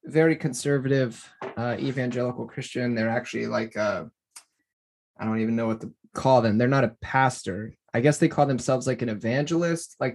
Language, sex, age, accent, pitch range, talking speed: English, male, 20-39, American, 120-150 Hz, 175 wpm